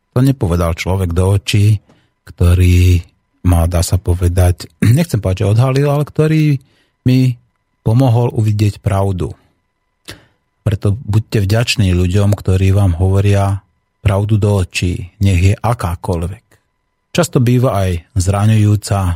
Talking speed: 115 wpm